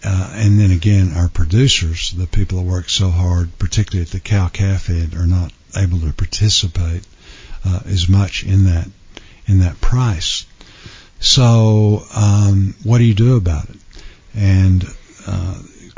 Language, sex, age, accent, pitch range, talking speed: English, male, 50-69, American, 90-105 Hz, 150 wpm